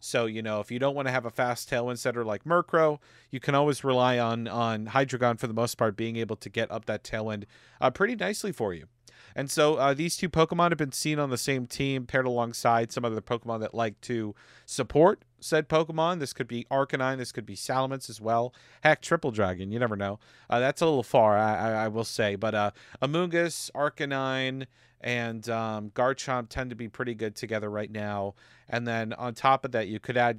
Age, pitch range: 40-59, 115-145 Hz